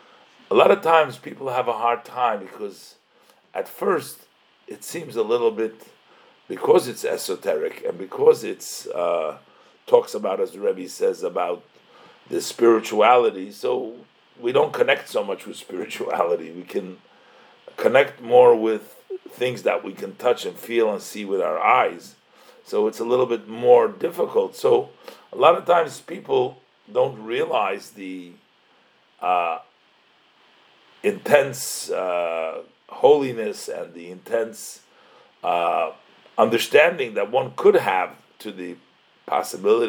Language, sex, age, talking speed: English, male, 50-69, 135 wpm